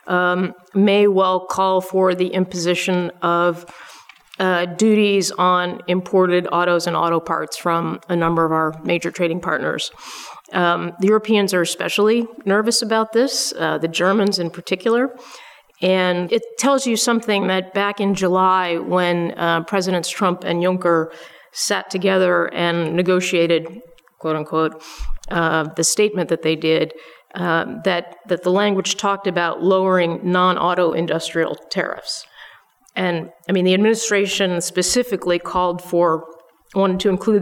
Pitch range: 170-195 Hz